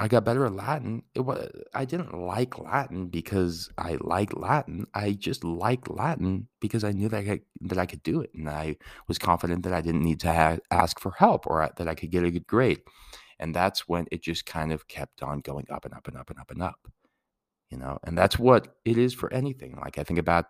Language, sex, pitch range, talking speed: English, male, 85-110 Hz, 245 wpm